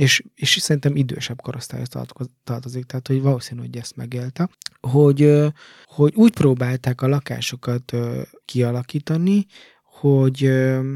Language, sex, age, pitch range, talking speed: Hungarian, male, 20-39, 125-145 Hz, 110 wpm